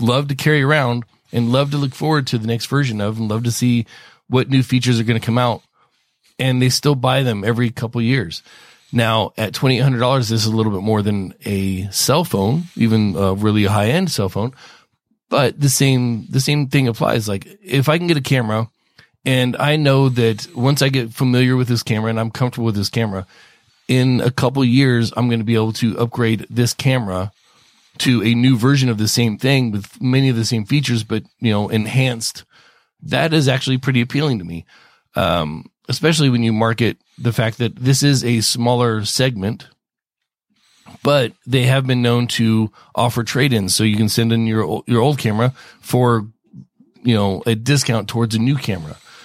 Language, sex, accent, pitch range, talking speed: English, male, American, 110-130 Hz, 200 wpm